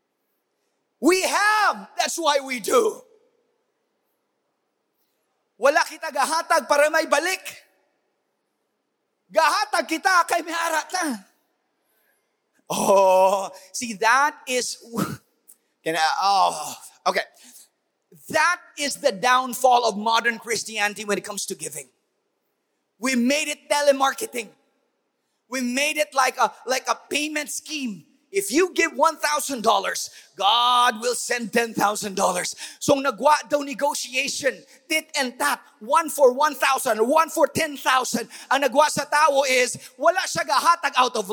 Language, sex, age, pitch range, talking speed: English, male, 30-49, 245-320 Hz, 115 wpm